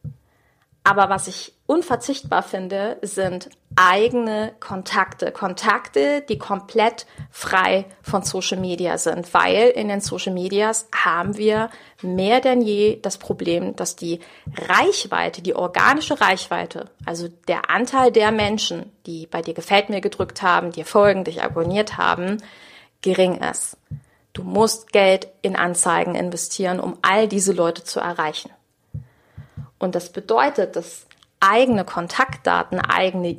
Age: 40-59